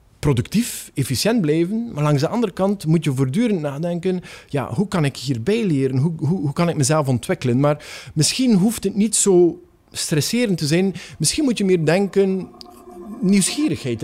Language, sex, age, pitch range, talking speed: Dutch, male, 50-69, 145-195 Hz, 170 wpm